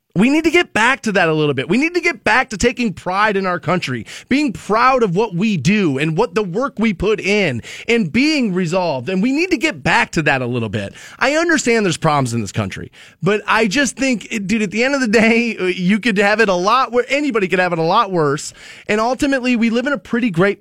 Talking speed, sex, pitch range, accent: 255 wpm, male, 155-235 Hz, American